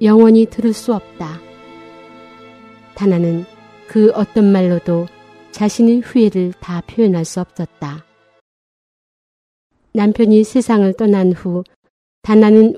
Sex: female